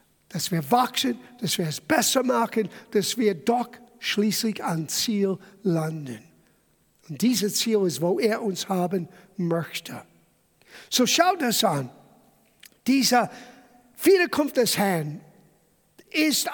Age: 50-69